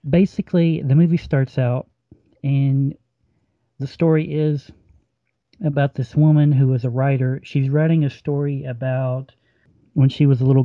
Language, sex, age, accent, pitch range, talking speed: English, male, 40-59, American, 125-145 Hz, 145 wpm